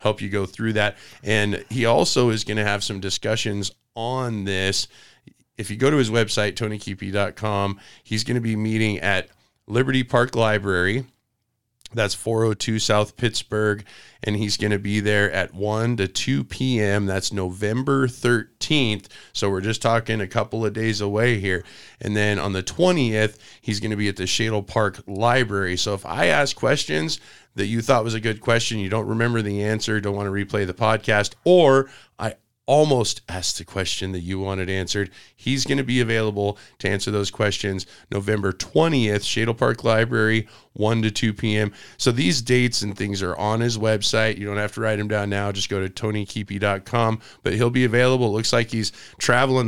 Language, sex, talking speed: English, male, 185 wpm